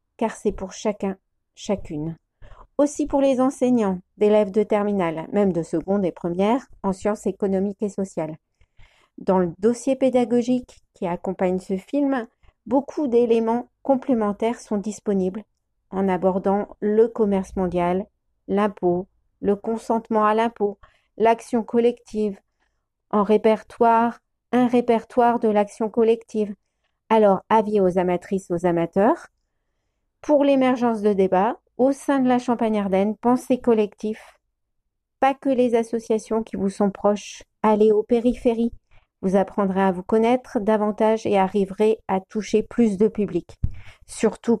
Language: French